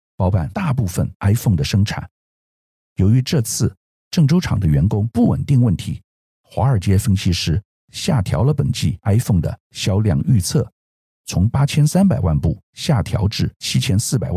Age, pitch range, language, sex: 50-69, 90-135 Hz, Chinese, male